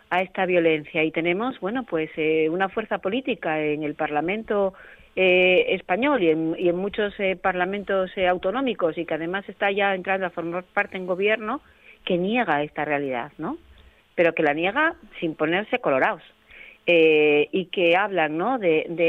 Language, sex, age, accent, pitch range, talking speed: Spanish, female, 40-59, Spanish, 165-205 Hz, 175 wpm